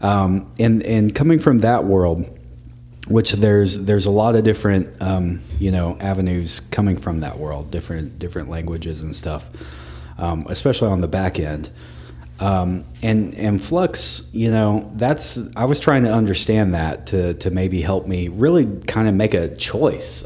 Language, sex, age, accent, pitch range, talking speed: English, male, 30-49, American, 85-110 Hz, 170 wpm